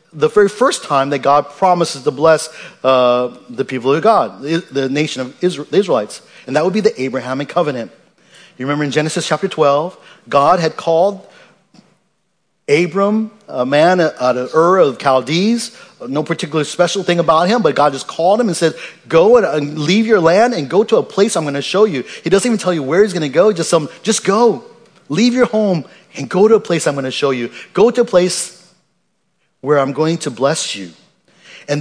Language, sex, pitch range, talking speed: English, male, 135-195 Hz, 205 wpm